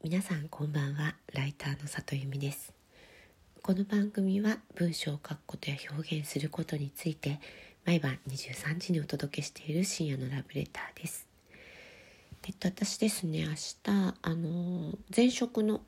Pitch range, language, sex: 145-195 Hz, Japanese, female